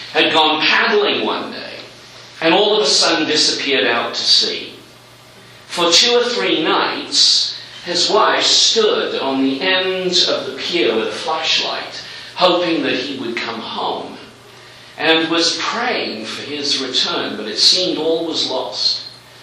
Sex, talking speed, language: male, 150 wpm, English